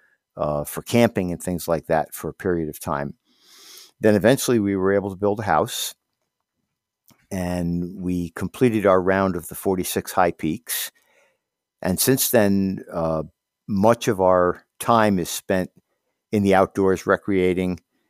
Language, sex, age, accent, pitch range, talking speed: English, male, 50-69, American, 85-105 Hz, 150 wpm